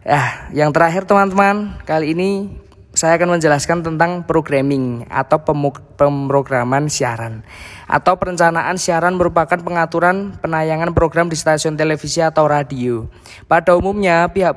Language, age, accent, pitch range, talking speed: Indonesian, 20-39, native, 140-165 Hz, 125 wpm